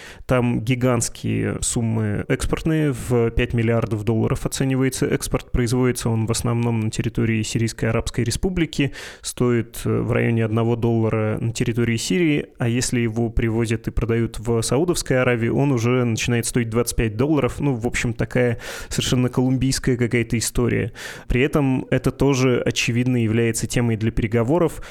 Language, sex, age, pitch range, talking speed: Russian, male, 20-39, 115-130 Hz, 140 wpm